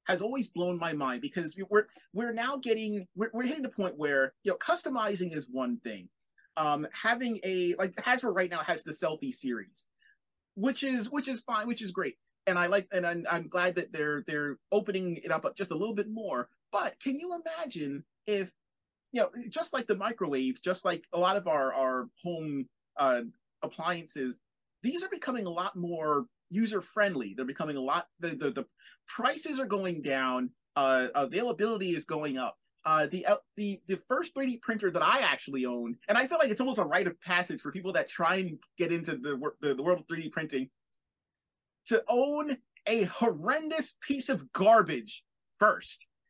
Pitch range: 155-240 Hz